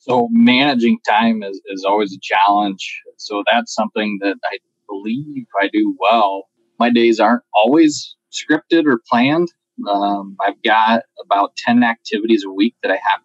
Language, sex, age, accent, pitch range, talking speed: English, male, 20-39, American, 105-125 Hz, 160 wpm